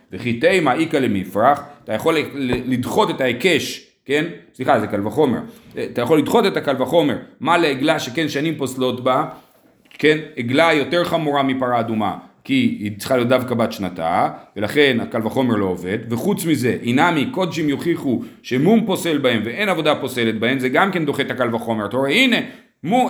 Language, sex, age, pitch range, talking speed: Hebrew, male, 40-59, 130-175 Hz, 175 wpm